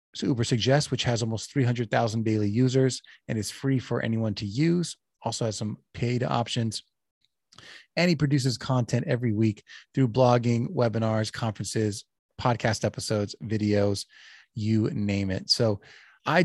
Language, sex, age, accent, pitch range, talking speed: English, male, 30-49, American, 115-140 Hz, 140 wpm